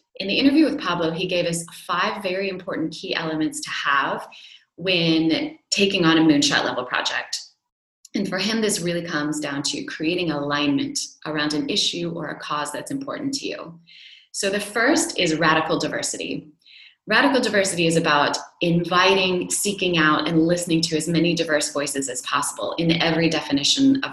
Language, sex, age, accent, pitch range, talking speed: English, female, 20-39, American, 150-190 Hz, 170 wpm